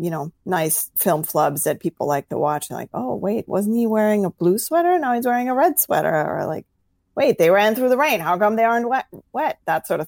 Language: English